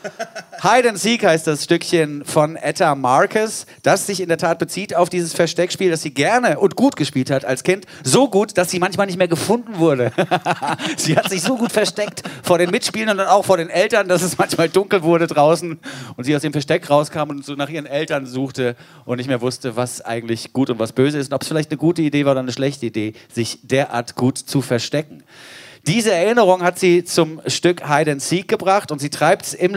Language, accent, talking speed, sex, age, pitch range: German, German, 225 wpm, male, 40-59, 140-180 Hz